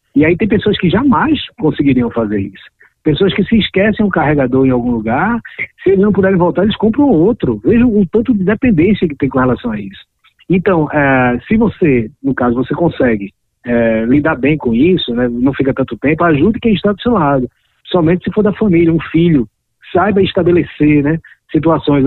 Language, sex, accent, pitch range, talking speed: Portuguese, male, Brazilian, 130-190 Hz, 200 wpm